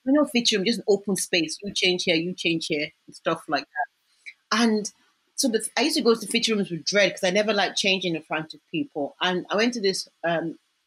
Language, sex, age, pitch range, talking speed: English, female, 30-49, 170-220 Hz, 250 wpm